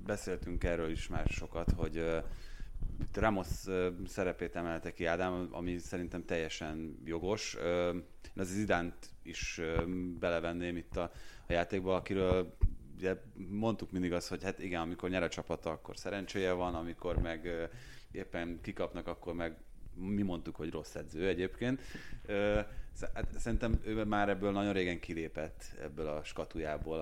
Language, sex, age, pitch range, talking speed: Hungarian, male, 30-49, 80-95 Hz, 150 wpm